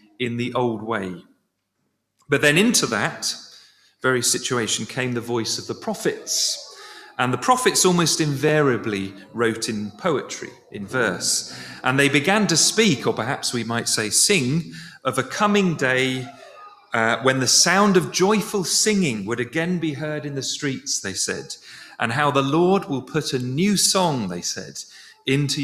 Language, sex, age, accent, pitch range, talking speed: English, male, 40-59, British, 120-175 Hz, 160 wpm